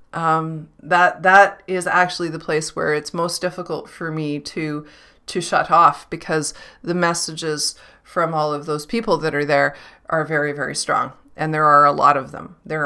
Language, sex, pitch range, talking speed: English, female, 160-220 Hz, 185 wpm